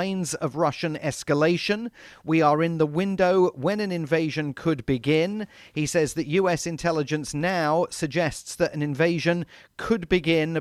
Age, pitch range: 40-59, 140-170 Hz